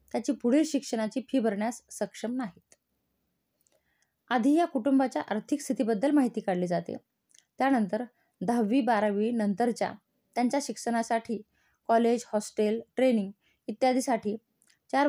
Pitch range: 215-265 Hz